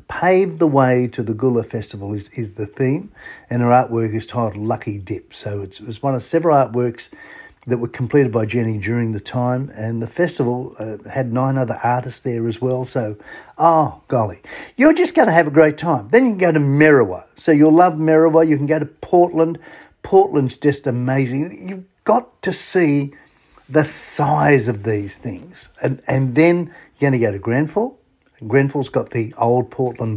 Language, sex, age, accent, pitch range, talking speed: English, male, 50-69, Australian, 115-150 Hz, 195 wpm